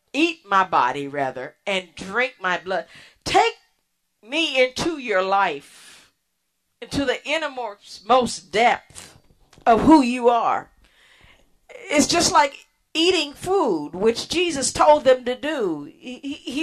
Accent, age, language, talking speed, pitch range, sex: American, 40-59, English, 125 wpm, 205-295 Hz, female